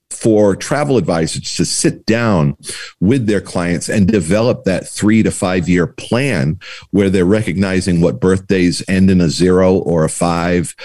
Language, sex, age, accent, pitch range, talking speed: English, male, 50-69, American, 85-115 Hz, 160 wpm